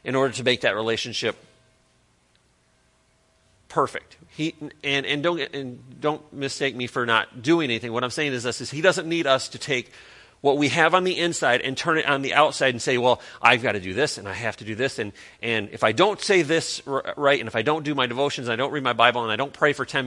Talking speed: 255 wpm